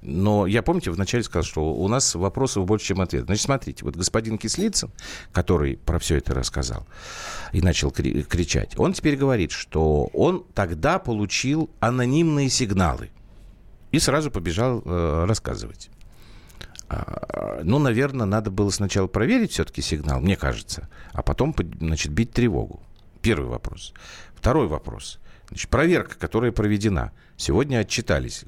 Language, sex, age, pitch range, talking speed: Russian, male, 50-69, 85-120 Hz, 135 wpm